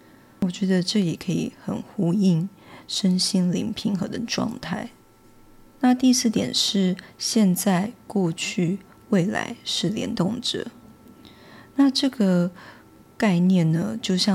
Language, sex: English, female